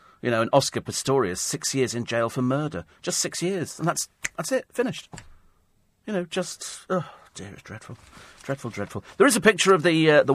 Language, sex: English, male